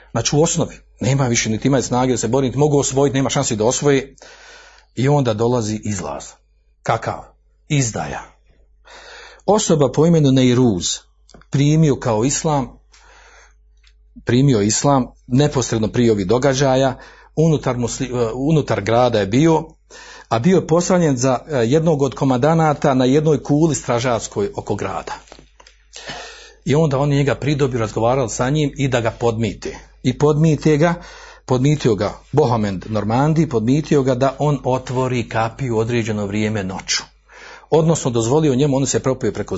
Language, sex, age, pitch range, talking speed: Croatian, male, 50-69, 115-150 Hz, 140 wpm